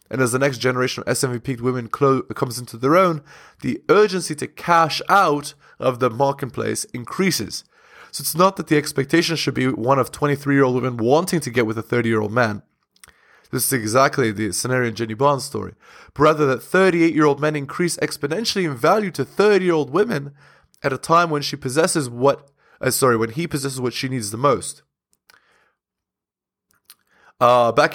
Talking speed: 175 wpm